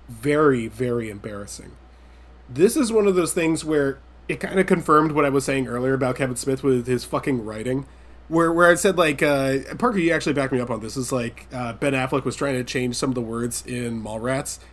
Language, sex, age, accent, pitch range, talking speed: English, male, 20-39, American, 115-145 Hz, 225 wpm